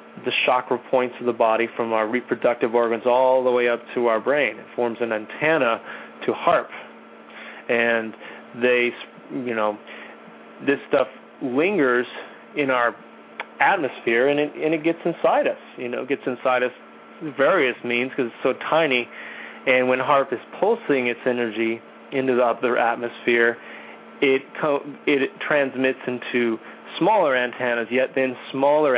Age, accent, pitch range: 30-49, American, 120-140 Hz